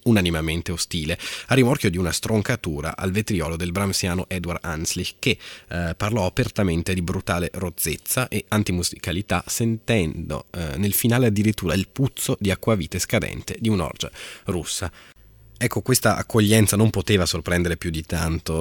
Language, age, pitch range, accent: Italian, 30-49, 85-105 Hz, native